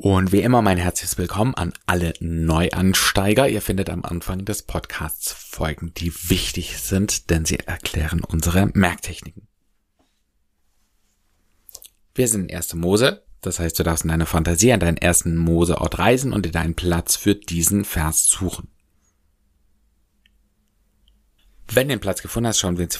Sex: male